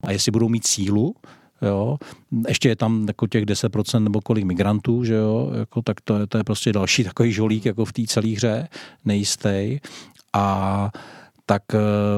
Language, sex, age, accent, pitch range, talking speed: Czech, male, 50-69, native, 110-125 Hz, 170 wpm